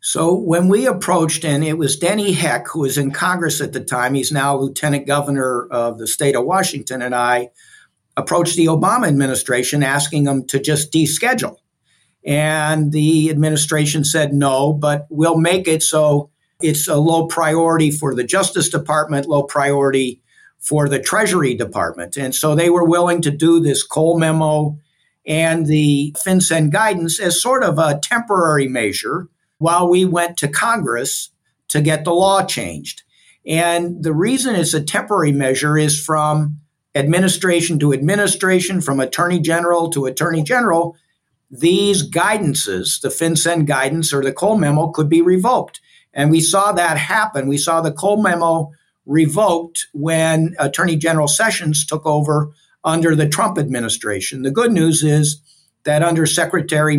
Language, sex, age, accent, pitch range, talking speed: English, male, 50-69, American, 145-170 Hz, 155 wpm